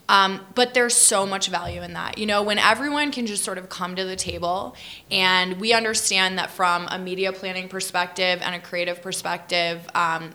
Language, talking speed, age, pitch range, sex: English, 195 wpm, 20-39, 170-195 Hz, female